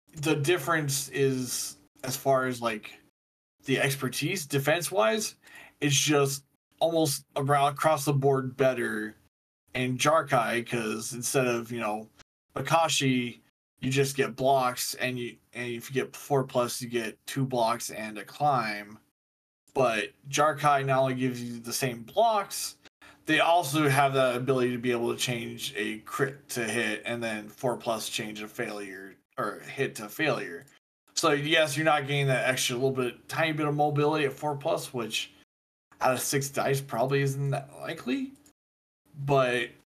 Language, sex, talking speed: English, male, 160 wpm